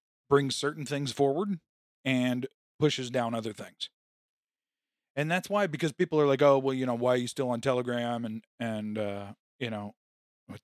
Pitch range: 115-145 Hz